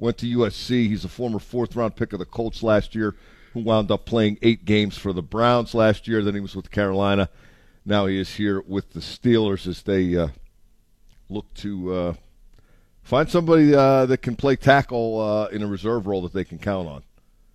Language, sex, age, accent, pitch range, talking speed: English, male, 50-69, American, 95-115 Hz, 200 wpm